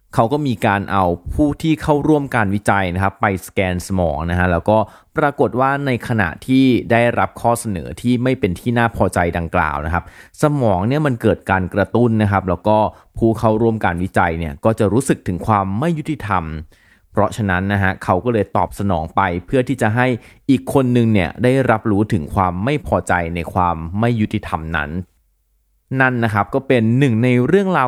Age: 20-39